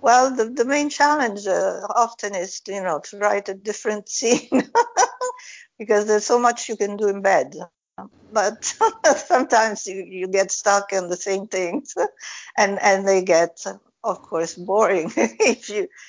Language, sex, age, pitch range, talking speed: English, female, 60-79, 180-220 Hz, 160 wpm